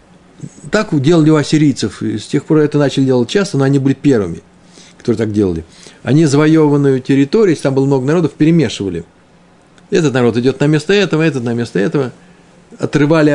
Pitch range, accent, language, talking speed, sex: 125-165 Hz, native, Russian, 170 wpm, male